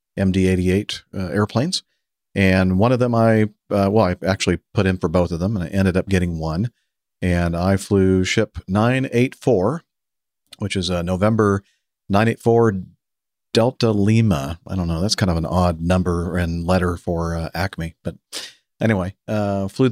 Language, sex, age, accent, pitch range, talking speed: English, male, 50-69, American, 85-105 Hz, 165 wpm